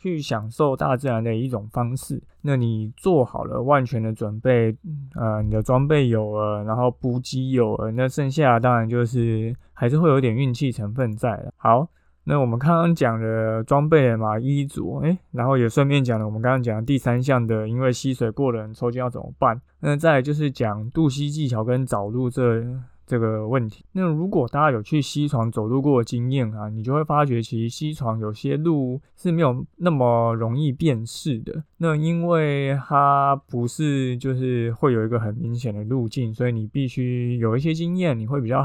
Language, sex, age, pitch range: Chinese, male, 20-39, 115-140 Hz